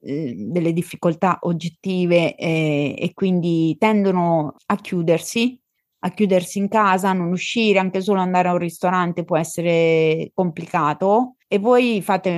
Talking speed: 130 wpm